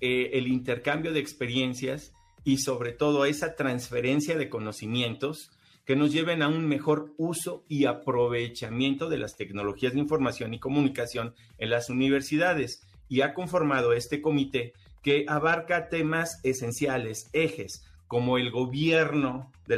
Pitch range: 120-150 Hz